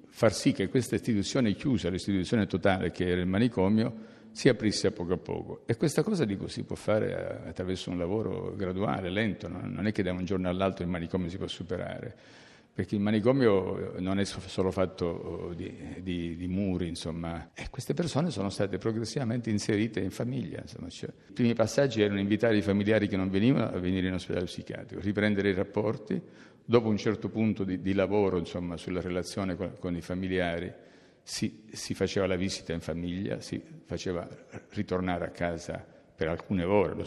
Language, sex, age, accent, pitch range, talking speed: Italian, male, 50-69, native, 90-110 Hz, 180 wpm